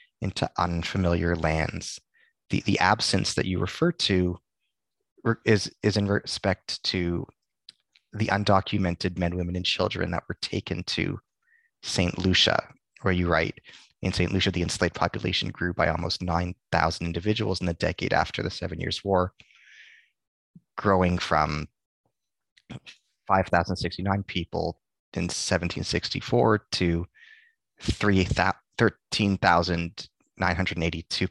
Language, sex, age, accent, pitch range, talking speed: English, male, 30-49, American, 85-105 Hz, 115 wpm